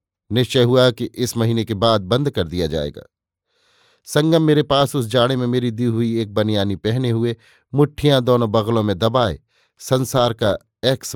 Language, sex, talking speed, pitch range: Hindi, male, 170 wpm, 110-135 Hz